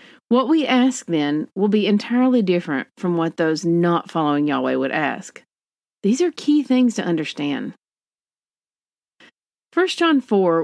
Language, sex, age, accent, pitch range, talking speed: English, female, 40-59, American, 170-240 Hz, 140 wpm